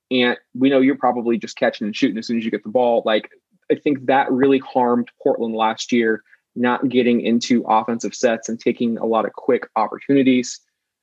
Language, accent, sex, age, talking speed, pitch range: English, American, male, 20-39, 200 wpm, 120-135 Hz